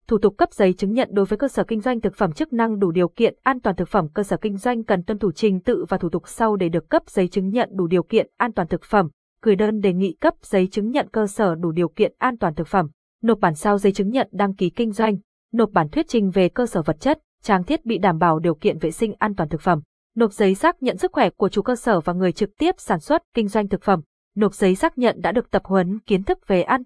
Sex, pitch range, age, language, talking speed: female, 185-235 Hz, 20-39, Vietnamese, 290 wpm